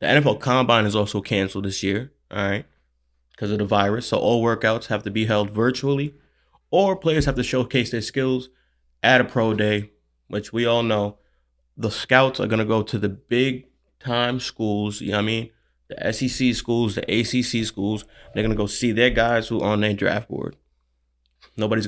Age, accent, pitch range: 20-39, American, 100-120 Hz